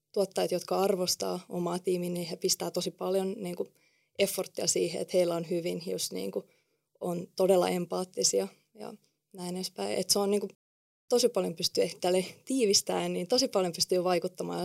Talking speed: 170 wpm